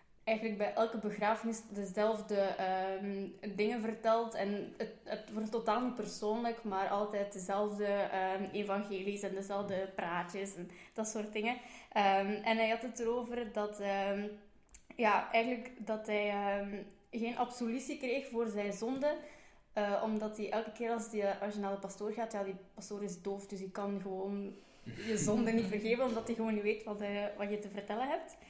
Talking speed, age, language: 175 wpm, 20-39, Dutch